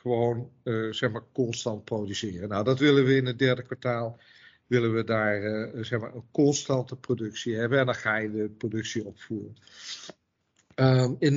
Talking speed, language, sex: 155 wpm, Dutch, male